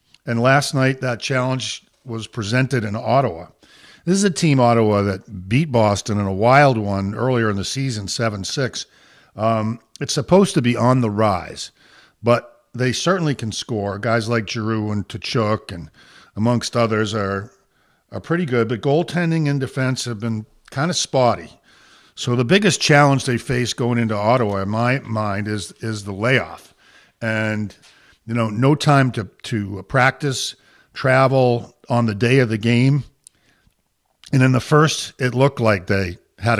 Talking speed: 165 wpm